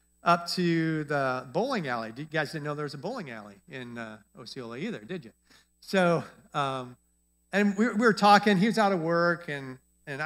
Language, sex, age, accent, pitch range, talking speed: English, male, 50-69, American, 115-180 Hz, 195 wpm